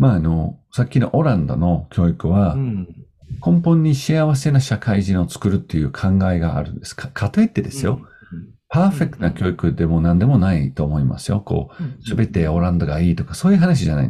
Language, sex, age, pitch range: Japanese, male, 50-69, 90-145 Hz